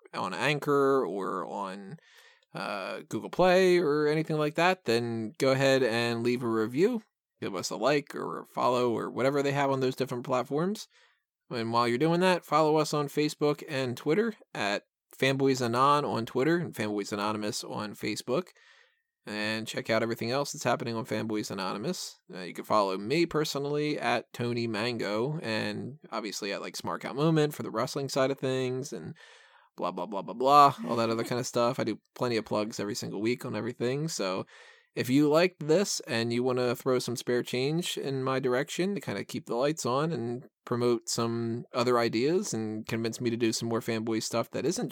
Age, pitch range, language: 20-39, 115-155 Hz, English